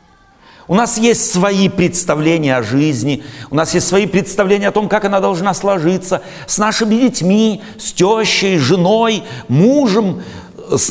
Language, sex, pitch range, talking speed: Russian, male, 155-225 Hz, 145 wpm